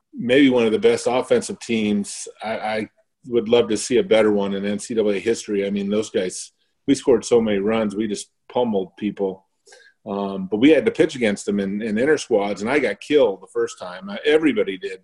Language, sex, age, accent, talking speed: English, male, 40-59, American, 210 wpm